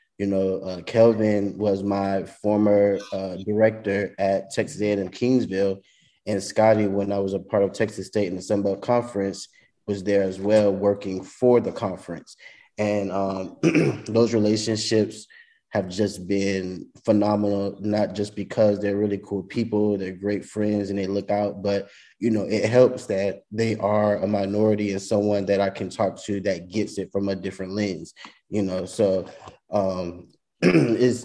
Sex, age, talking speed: male, 20-39, 165 wpm